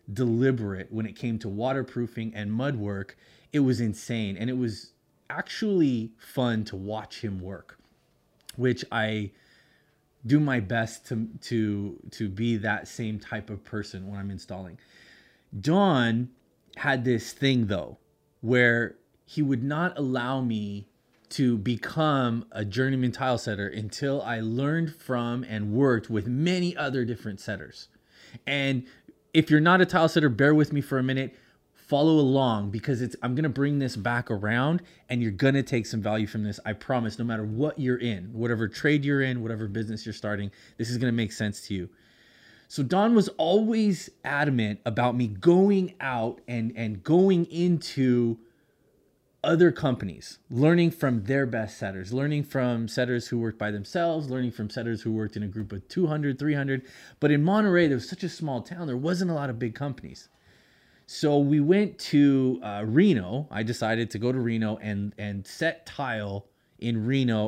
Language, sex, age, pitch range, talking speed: English, male, 30-49, 110-140 Hz, 170 wpm